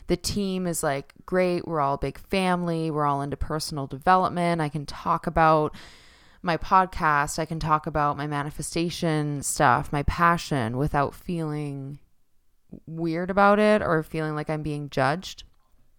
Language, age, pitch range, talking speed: English, 20-39, 150-190 Hz, 150 wpm